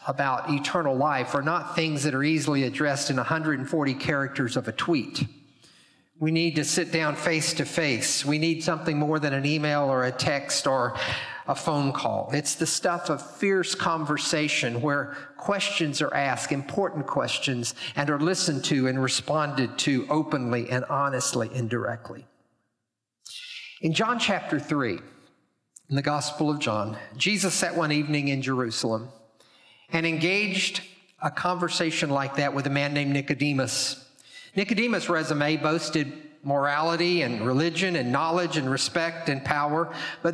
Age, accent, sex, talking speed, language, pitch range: 50-69, American, male, 150 wpm, English, 140-175 Hz